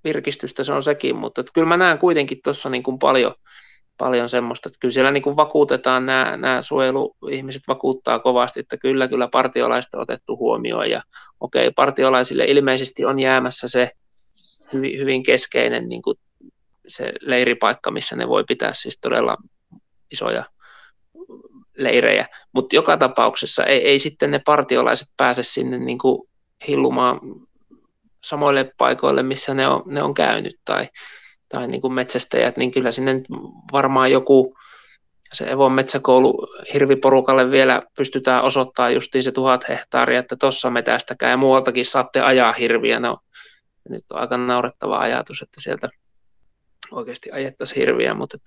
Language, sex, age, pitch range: Finnish, male, 20-39, 125-155 Hz